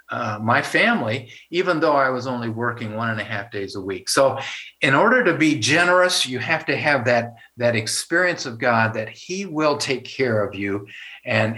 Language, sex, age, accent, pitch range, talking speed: English, male, 50-69, American, 110-140 Hz, 200 wpm